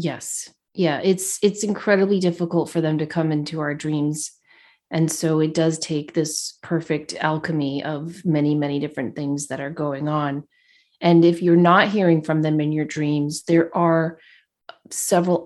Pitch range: 155-205 Hz